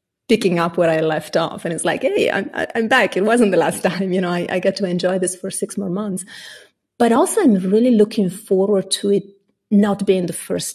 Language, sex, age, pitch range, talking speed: English, female, 30-49, 170-215 Hz, 235 wpm